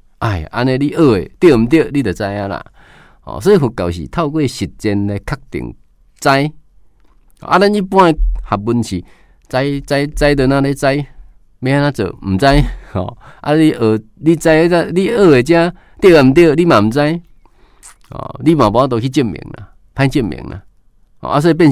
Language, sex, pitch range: Chinese, male, 105-145 Hz